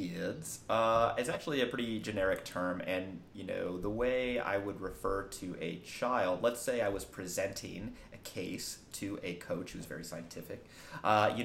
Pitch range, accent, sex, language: 90-105 Hz, American, male, English